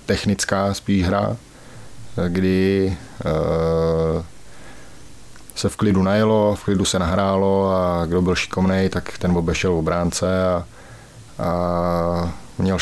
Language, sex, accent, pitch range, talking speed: Czech, male, native, 90-95 Hz, 115 wpm